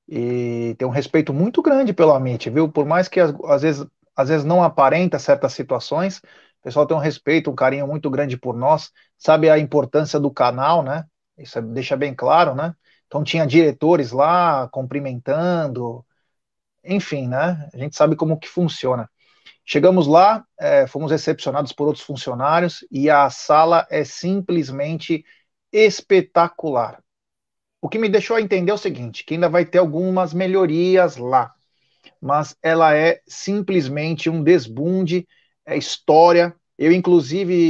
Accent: Brazilian